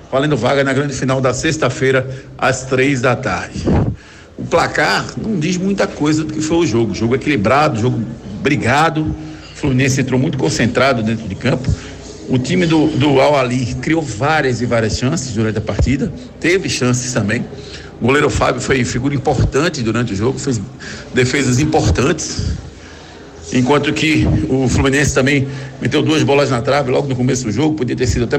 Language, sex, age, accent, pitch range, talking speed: Portuguese, male, 60-79, Brazilian, 125-145 Hz, 170 wpm